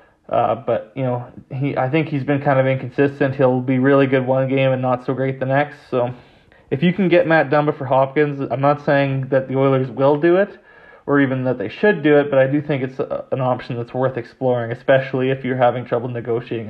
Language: English